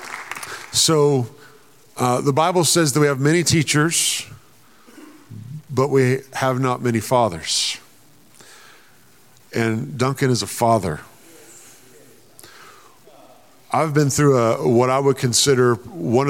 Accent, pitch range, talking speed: American, 115-135 Hz, 110 wpm